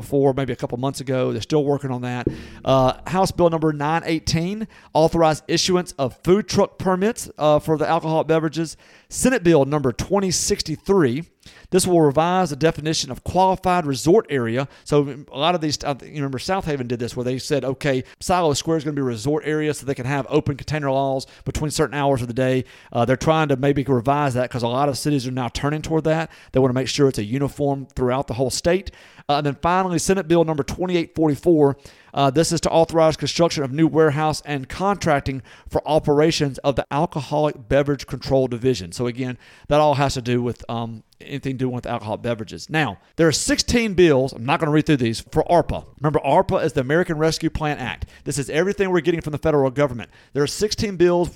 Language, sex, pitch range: English, male, 130-165 Hz